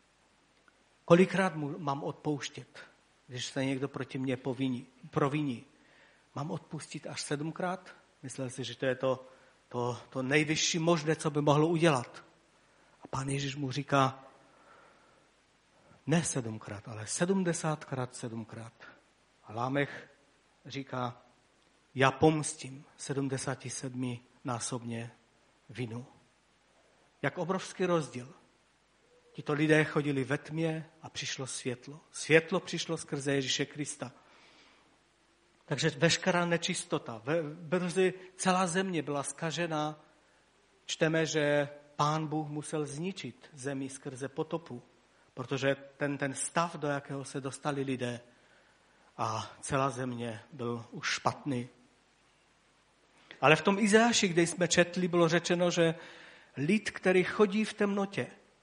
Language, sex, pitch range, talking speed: Czech, male, 130-165 Hz, 110 wpm